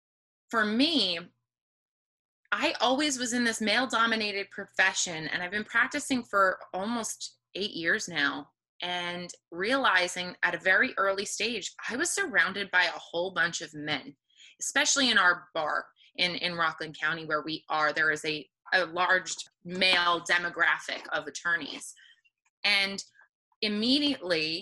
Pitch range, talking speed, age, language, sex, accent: 180-250 Hz, 135 wpm, 20-39, English, female, American